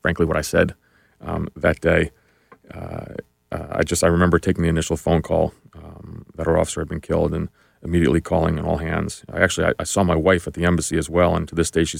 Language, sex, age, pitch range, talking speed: English, male, 30-49, 80-90 Hz, 240 wpm